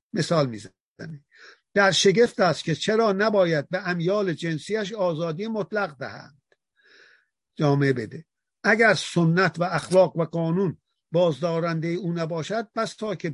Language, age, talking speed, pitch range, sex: Persian, 50-69, 125 wpm, 150-195 Hz, male